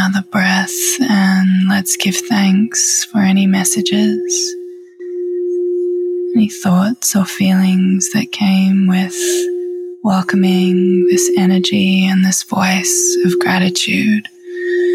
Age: 20-39